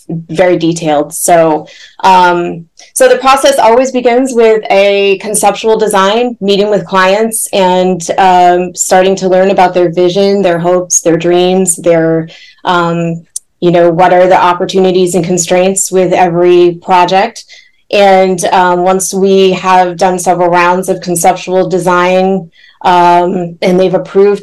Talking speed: 140 wpm